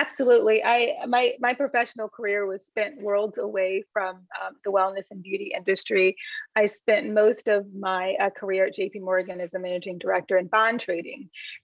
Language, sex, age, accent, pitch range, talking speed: English, female, 30-49, American, 185-220 Hz, 175 wpm